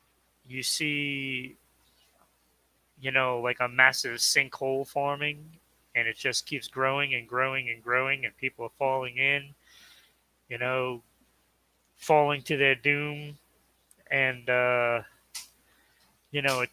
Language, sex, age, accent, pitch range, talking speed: English, male, 30-49, American, 125-155 Hz, 120 wpm